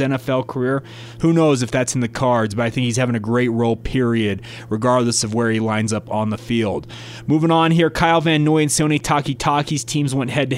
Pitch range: 120-150 Hz